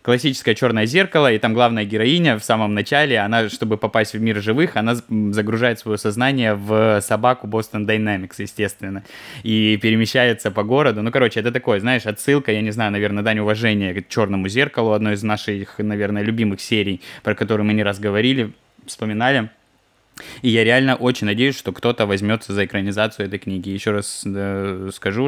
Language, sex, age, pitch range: Russian, male, 20-39, 105-115 Hz